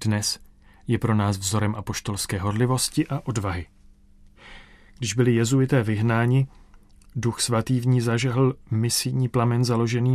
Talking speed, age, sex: 125 wpm, 30-49, male